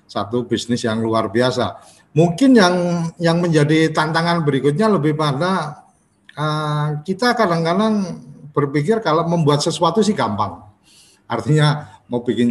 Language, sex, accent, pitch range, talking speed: Indonesian, male, native, 115-150 Hz, 120 wpm